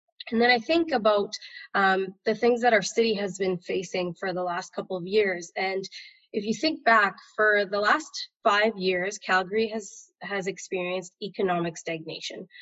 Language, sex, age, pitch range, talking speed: English, female, 20-39, 190-245 Hz, 170 wpm